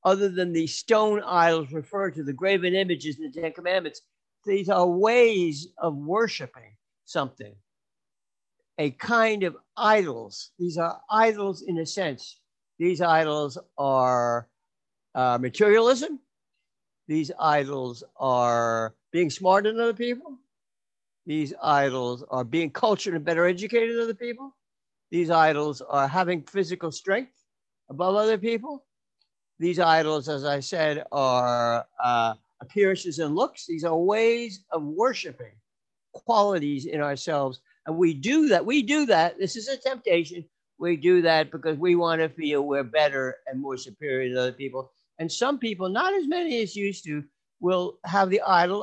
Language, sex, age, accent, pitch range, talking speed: English, male, 60-79, American, 145-210 Hz, 150 wpm